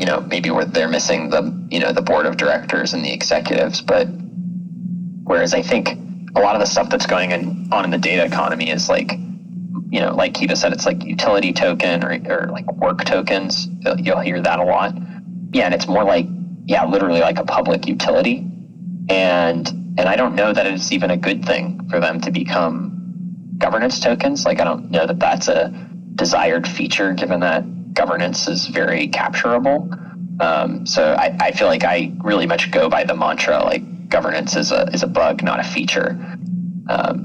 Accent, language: American, English